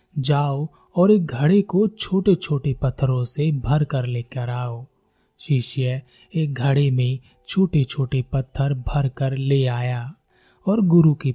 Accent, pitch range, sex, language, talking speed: native, 130-160 Hz, male, Hindi, 155 wpm